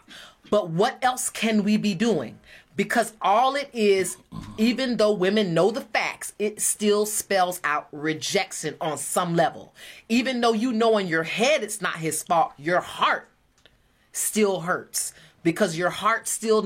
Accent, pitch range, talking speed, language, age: American, 185-245 Hz, 160 wpm, English, 30-49